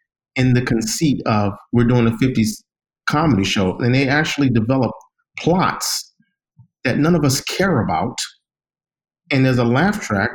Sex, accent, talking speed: male, American, 150 wpm